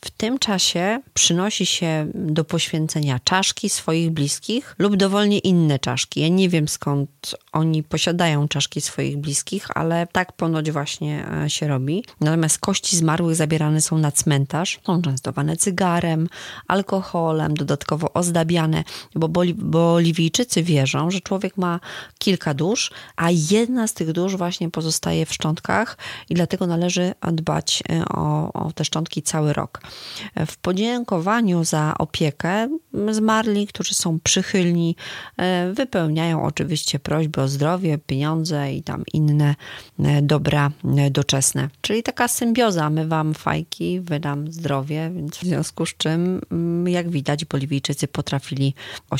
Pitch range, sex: 150-180 Hz, female